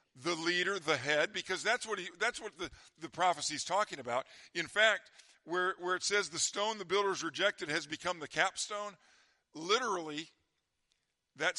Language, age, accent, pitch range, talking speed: English, 50-69, American, 165-195 Hz, 170 wpm